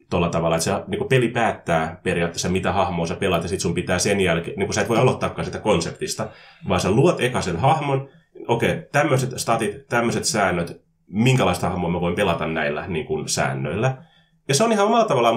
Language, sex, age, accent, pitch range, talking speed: Finnish, male, 20-39, native, 85-130 Hz, 200 wpm